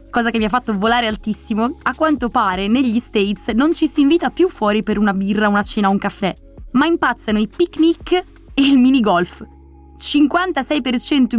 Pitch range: 205-275 Hz